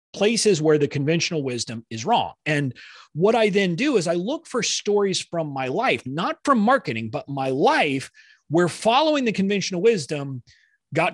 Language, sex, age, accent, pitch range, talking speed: English, male, 30-49, American, 130-200 Hz, 170 wpm